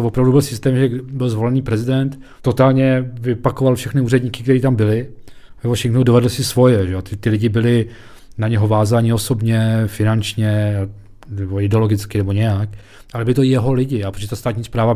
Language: Czech